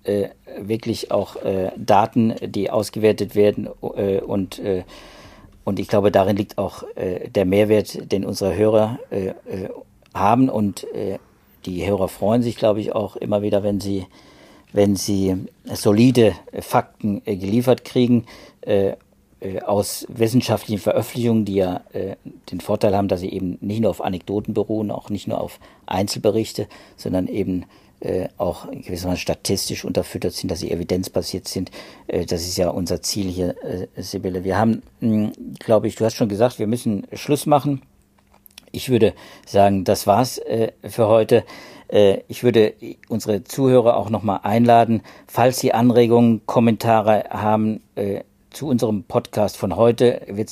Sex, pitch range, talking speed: male, 100-115 Hz, 145 wpm